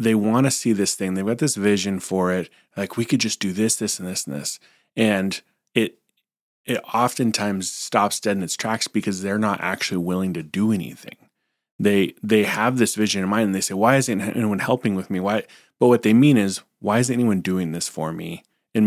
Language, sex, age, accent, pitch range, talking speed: English, male, 30-49, American, 95-110 Hz, 225 wpm